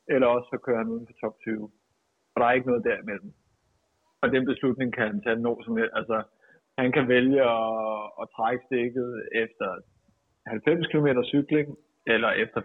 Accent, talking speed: native, 165 wpm